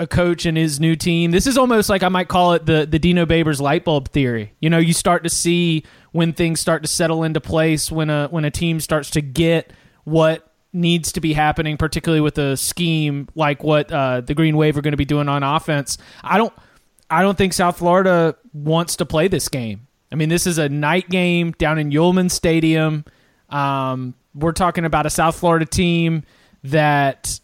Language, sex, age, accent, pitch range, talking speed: English, male, 30-49, American, 155-185 Hz, 210 wpm